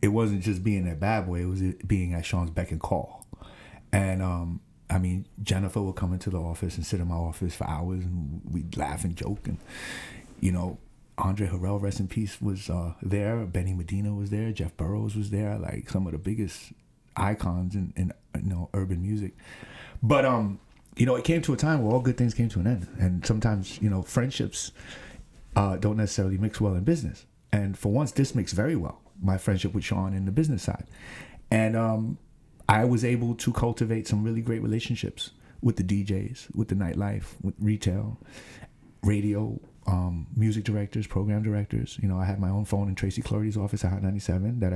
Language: English